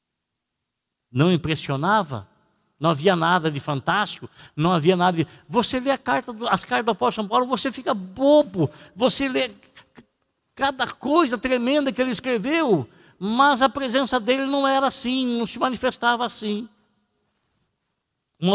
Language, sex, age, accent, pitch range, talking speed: Portuguese, male, 60-79, Brazilian, 145-215 Hz, 135 wpm